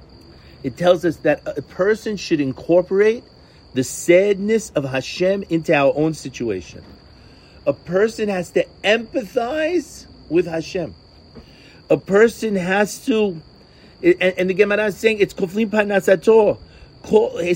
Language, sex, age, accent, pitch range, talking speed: English, male, 40-59, American, 155-215 Hz, 125 wpm